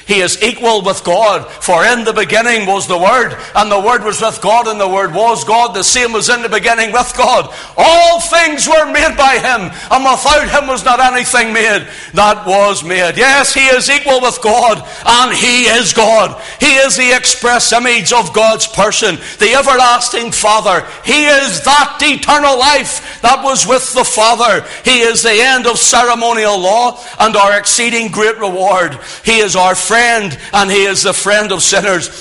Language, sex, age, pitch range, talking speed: English, male, 60-79, 200-250 Hz, 190 wpm